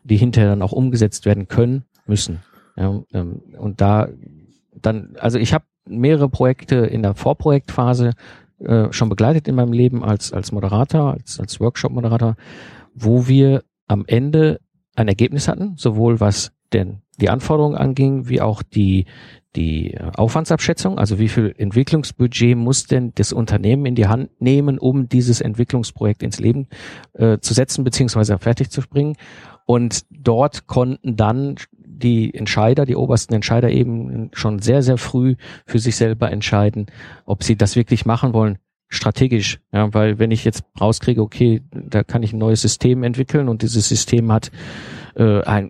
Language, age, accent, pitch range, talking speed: German, 50-69, German, 110-130 Hz, 150 wpm